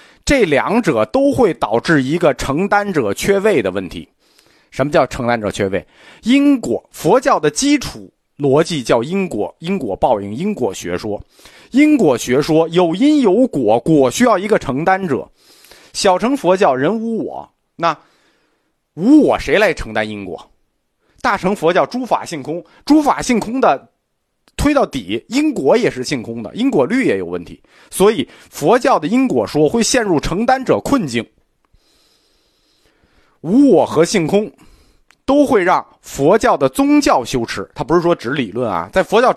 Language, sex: Chinese, male